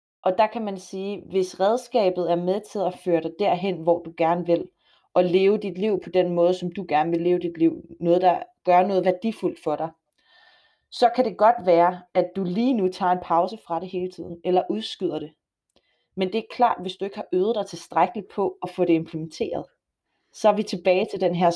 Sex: female